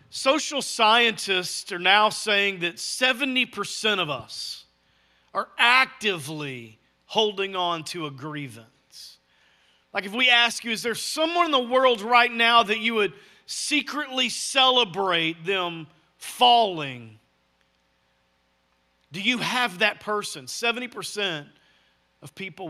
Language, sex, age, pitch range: English, male, 40-59, 140-220 Hz